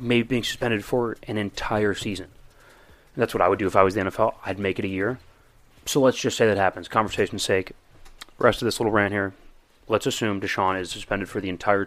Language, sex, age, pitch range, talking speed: English, male, 30-49, 100-130 Hz, 225 wpm